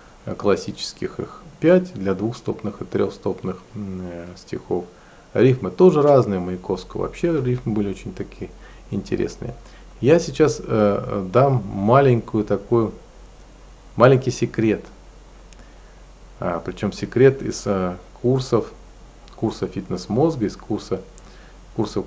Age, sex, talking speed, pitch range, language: 40-59, male, 105 wpm, 95-130 Hz, Russian